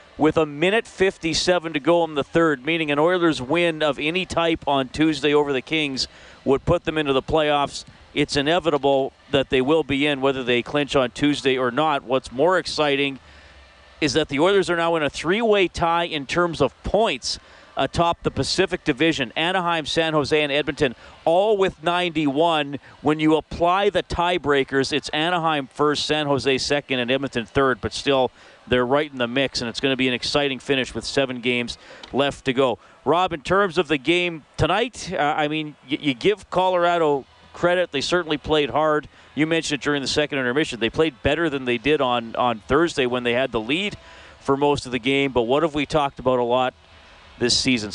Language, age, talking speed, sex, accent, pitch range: English, 40-59, 200 wpm, male, American, 130-160 Hz